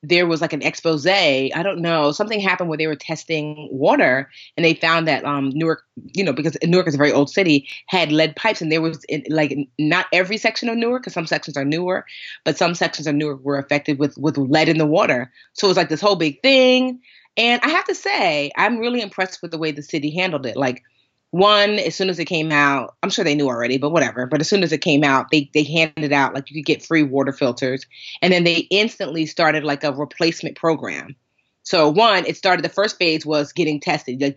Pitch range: 145-170 Hz